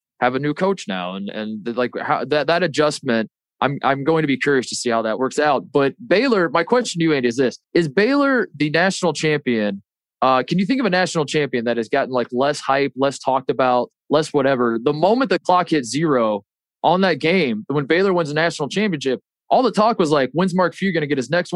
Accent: American